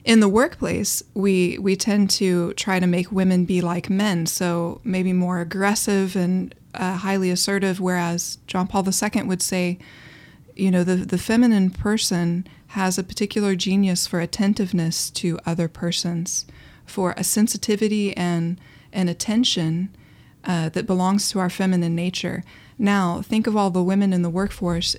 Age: 20-39